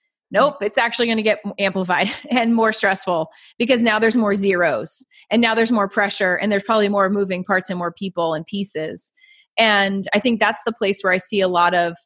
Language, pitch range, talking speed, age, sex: English, 185-220 Hz, 215 wpm, 20-39, female